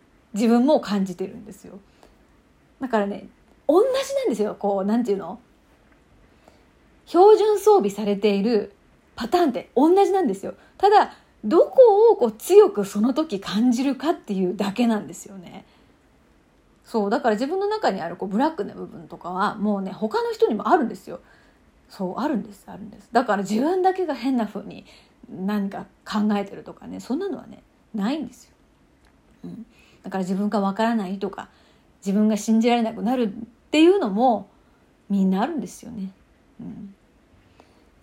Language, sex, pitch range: Japanese, female, 205-330 Hz